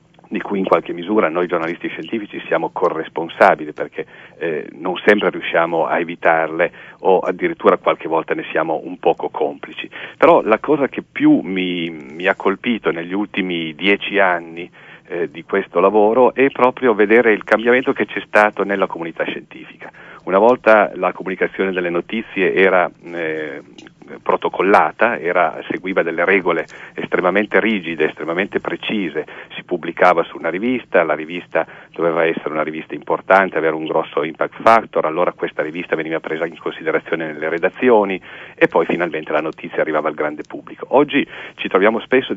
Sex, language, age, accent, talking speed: male, Italian, 40-59, native, 155 wpm